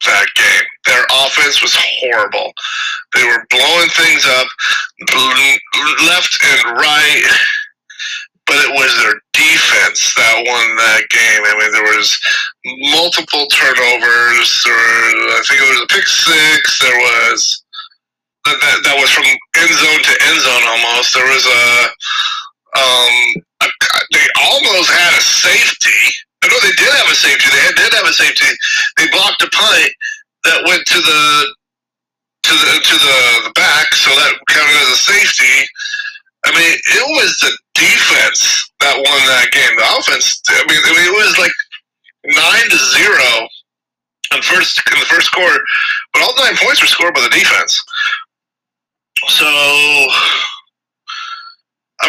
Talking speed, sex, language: 150 wpm, male, English